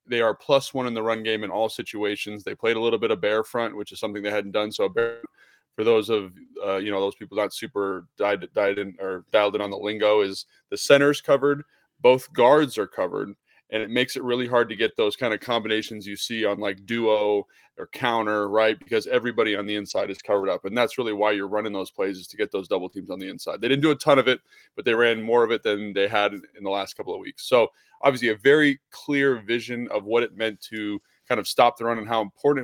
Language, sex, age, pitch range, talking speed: English, male, 20-39, 105-140 Hz, 255 wpm